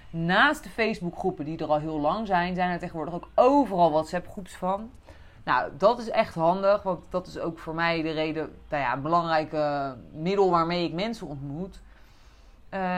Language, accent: Dutch, Dutch